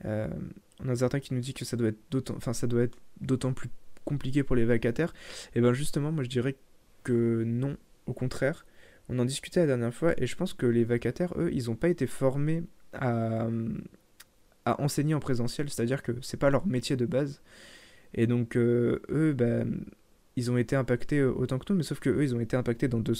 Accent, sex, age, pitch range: French, male, 20-39, 120-145 Hz